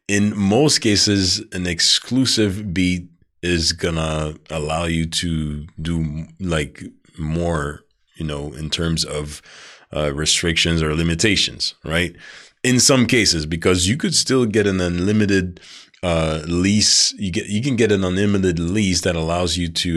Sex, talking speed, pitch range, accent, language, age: male, 145 wpm, 80-100 Hz, American, English, 30-49